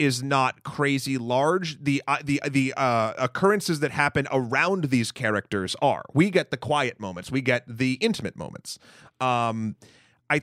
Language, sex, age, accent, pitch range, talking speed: English, male, 30-49, American, 120-145 Hz, 160 wpm